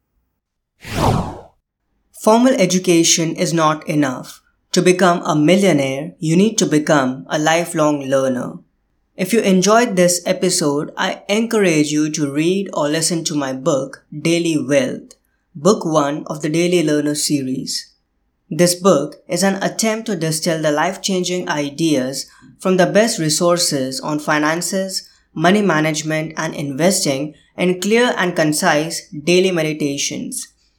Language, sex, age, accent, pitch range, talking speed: English, female, 20-39, Indian, 155-185 Hz, 130 wpm